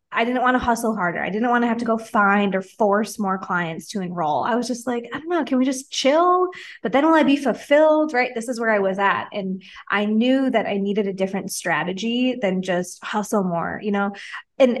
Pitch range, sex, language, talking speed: 190-240 Hz, female, English, 245 wpm